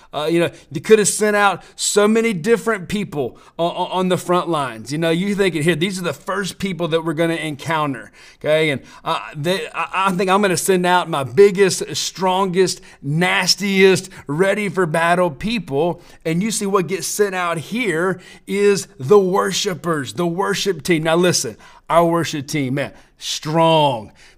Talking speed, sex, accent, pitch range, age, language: 175 wpm, male, American, 155-195 Hz, 40-59, English